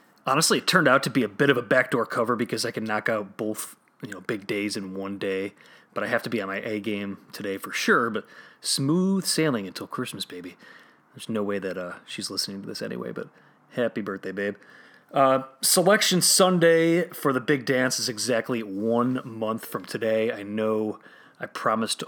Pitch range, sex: 105-135 Hz, male